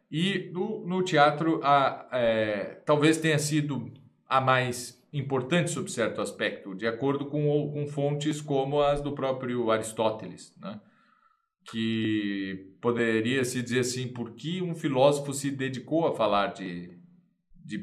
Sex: male